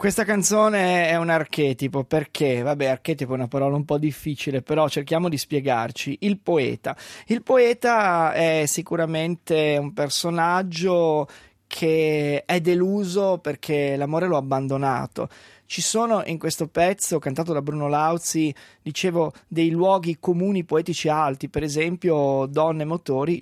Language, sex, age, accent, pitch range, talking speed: Italian, male, 20-39, native, 150-190 Hz, 135 wpm